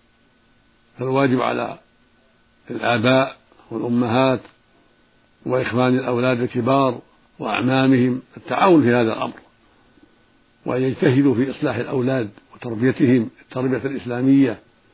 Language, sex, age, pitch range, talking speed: Arabic, male, 60-79, 120-135 Hz, 75 wpm